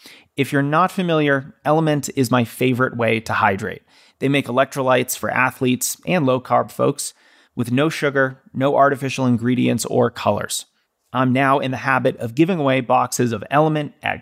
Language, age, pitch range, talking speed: English, 30-49, 120-145 Hz, 165 wpm